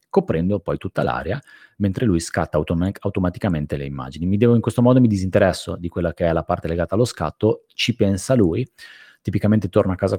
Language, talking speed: Italian, 195 wpm